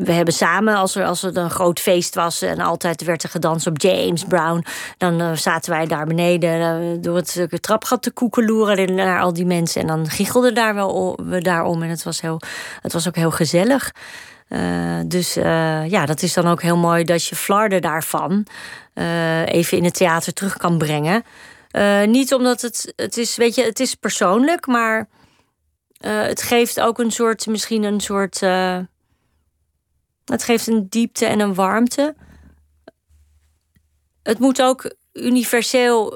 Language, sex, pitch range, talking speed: Dutch, female, 170-215 Hz, 175 wpm